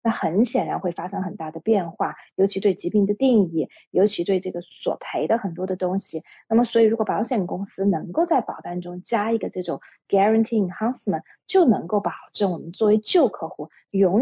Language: Chinese